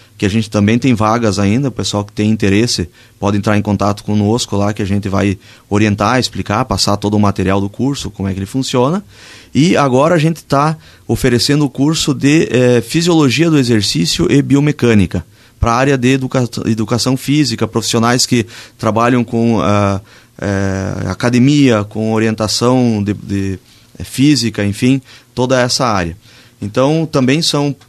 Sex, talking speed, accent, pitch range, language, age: male, 150 wpm, Brazilian, 105-130 Hz, Portuguese, 30-49